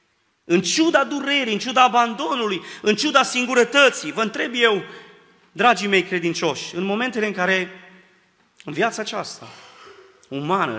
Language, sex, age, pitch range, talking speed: Romanian, male, 30-49, 145-185 Hz, 130 wpm